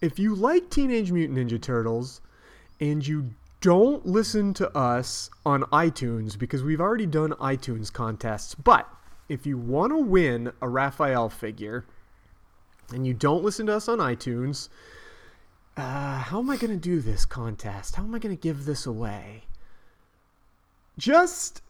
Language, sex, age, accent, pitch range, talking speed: English, male, 30-49, American, 120-180 Hz, 155 wpm